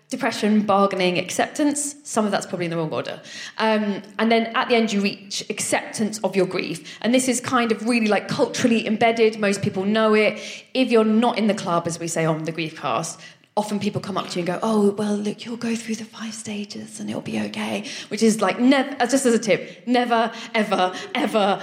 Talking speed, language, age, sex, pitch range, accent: 220 wpm, English, 20-39, female, 190-235 Hz, British